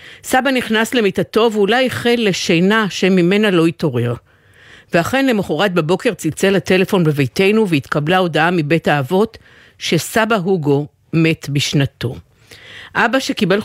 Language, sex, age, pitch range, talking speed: Hebrew, female, 50-69, 155-210 Hz, 110 wpm